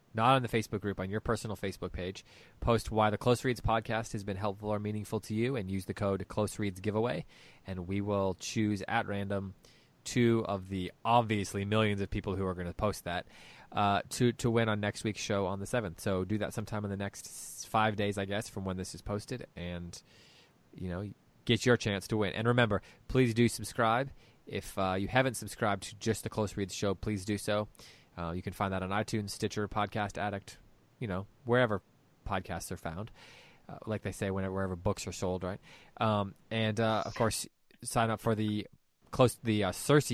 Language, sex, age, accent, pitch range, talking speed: English, male, 20-39, American, 95-115 Hz, 210 wpm